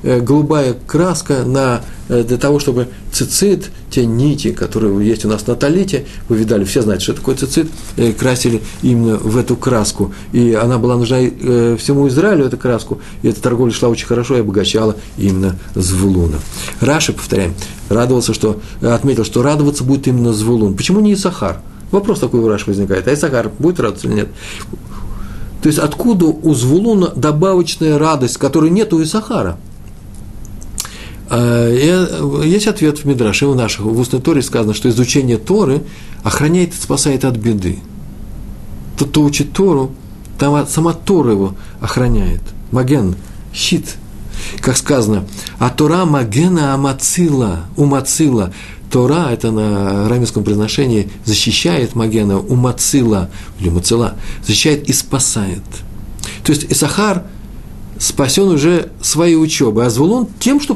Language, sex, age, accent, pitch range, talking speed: Russian, male, 50-69, native, 105-150 Hz, 140 wpm